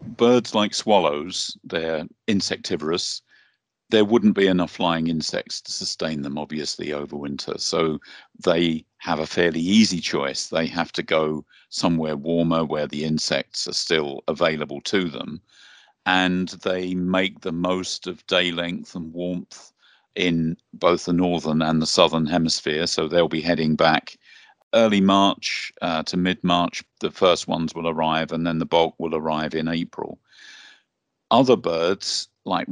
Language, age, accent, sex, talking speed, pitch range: English, 50-69, British, male, 150 wpm, 80-95 Hz